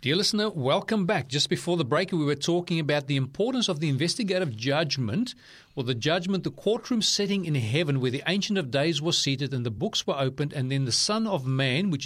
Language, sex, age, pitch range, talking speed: English, male, 40-59, 130-175 Hz, 225 wpm